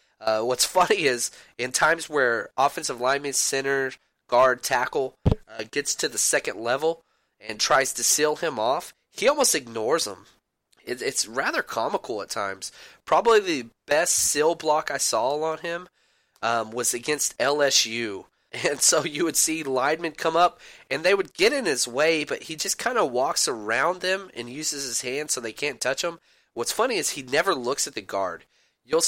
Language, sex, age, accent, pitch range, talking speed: English, male, 30-49, American, 125-180 Hz, 185 wpm